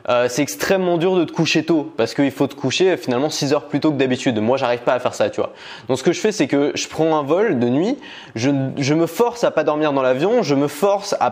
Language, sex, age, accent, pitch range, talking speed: French, male, 20-39, French, 130-170 Hz, 285 wpm